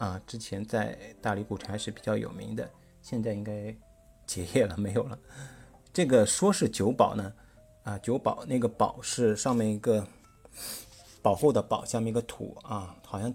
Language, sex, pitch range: Chinese, male, 100-120 Hz